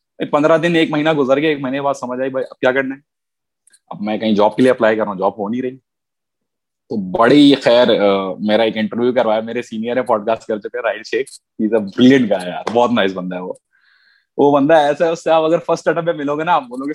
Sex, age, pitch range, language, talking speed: male, 20-39, 125-160 Hz, Urdu, 65 wpm